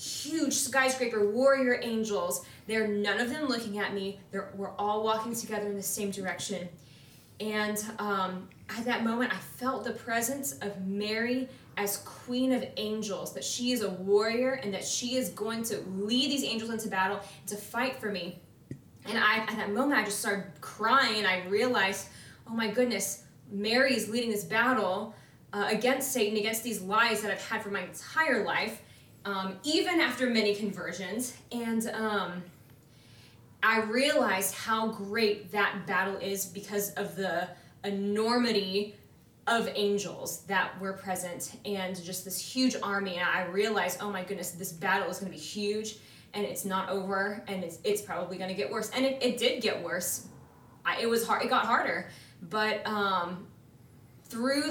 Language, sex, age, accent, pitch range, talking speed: English, female, 20-39, American, 190-230 Hz, 170 wpm